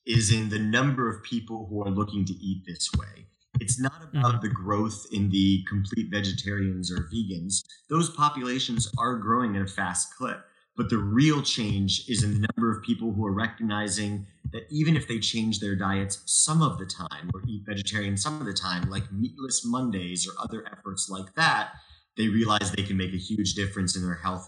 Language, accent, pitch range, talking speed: English, American, 100-125 Hz, 200 wpm